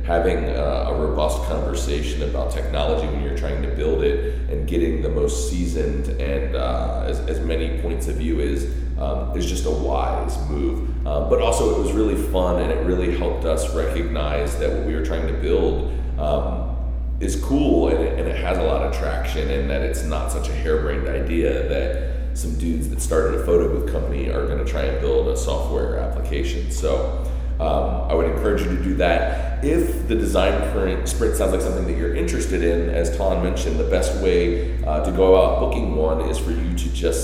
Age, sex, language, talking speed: 40-59, male, English, 200 wpm